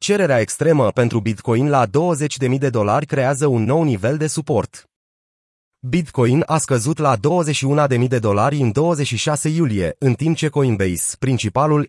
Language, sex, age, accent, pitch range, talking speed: Romanian, male, 30-49, native, 120-150 Hz, 155 wpm